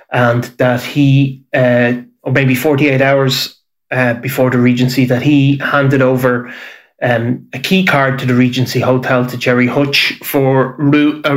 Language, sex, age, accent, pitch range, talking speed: English, male, 20-39, Irish, 125-140 Hz, 155 wpm